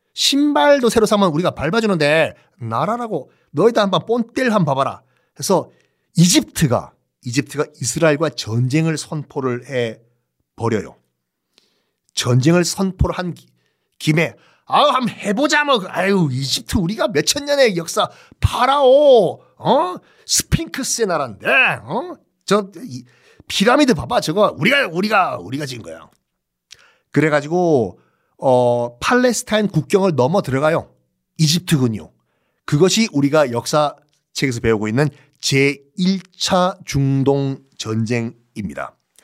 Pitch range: 130-185 Hz